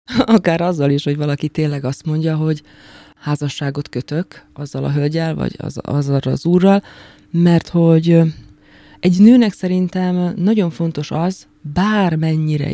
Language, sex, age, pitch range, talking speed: Hungarian, female, 20-39, 145-170 Hz, 130 wpm